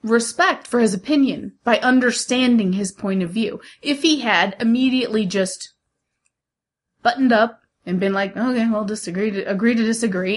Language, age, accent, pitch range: English, 30-49, American, 200-255 Hz